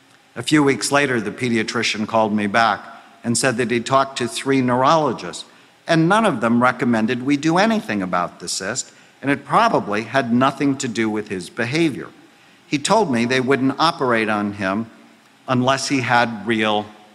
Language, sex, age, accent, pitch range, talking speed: English, male, 50-69, American, 105-135 Hz, 175 wpm